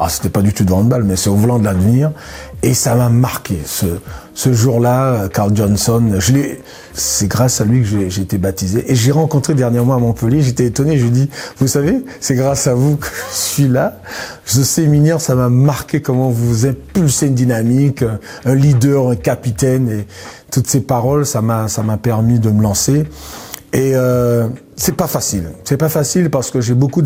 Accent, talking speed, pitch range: French, 210 wpm, 105-135 Hz